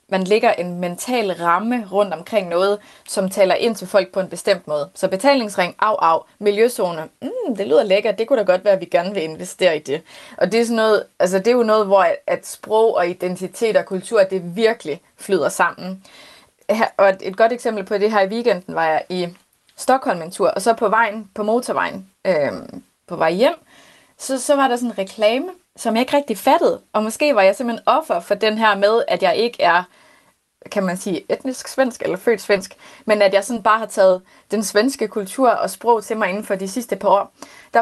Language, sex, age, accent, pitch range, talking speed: Danish, female, 20-39, native, 190-235 Hz, 220 wpm